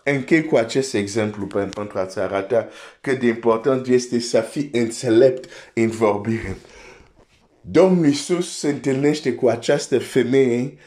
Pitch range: 115-150 Hz